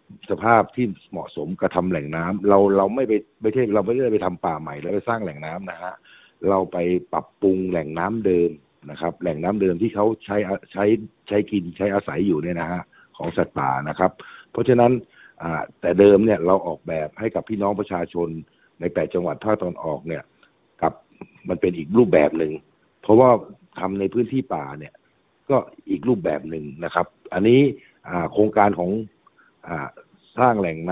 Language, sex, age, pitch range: Thai, male, 60-79, 85-105 Hz